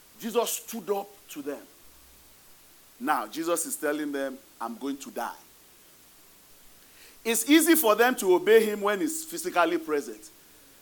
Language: English